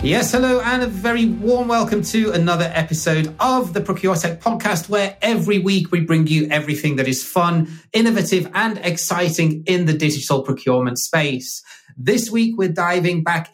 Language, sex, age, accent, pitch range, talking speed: English, male, 30-49, British, 135-175 Hz, 165 wpm